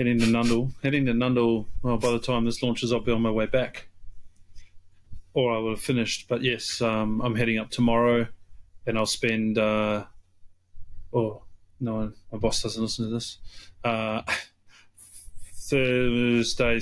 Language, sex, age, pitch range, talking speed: English, male, 30-49, 100-120 Hz, 155 wpm